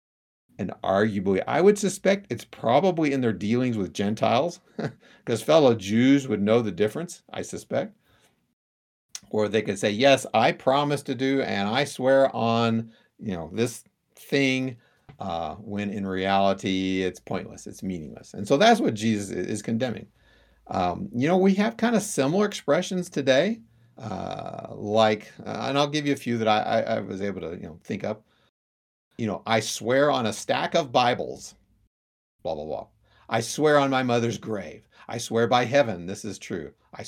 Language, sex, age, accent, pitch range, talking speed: English, male, 50-69, American, 100-145 Hz, 175 wpm